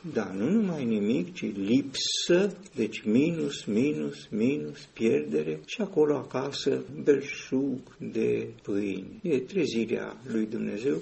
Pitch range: 110-130 Hz